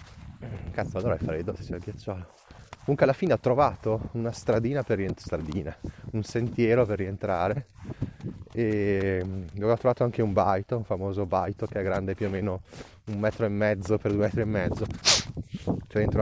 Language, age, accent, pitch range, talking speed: Italian, 20-39, native, 95-110 Hz, 180 wpm